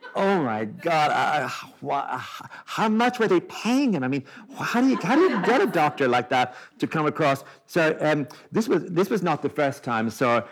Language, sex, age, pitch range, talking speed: English, male, 50-69, 120-165 Hz, 210 wpm